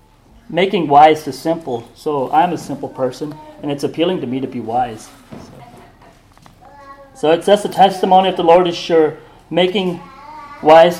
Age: 30-49